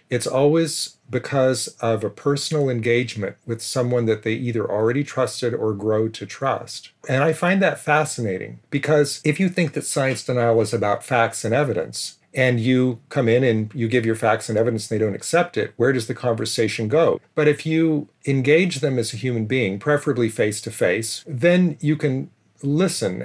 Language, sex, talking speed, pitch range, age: English, male, 185 wpm, 115-145 Hz, 40-59